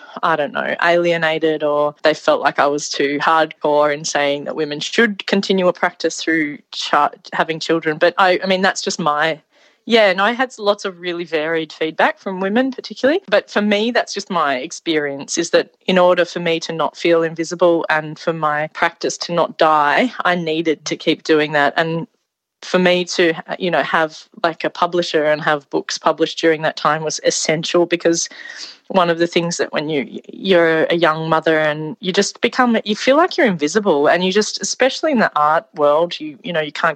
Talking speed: 210 wpm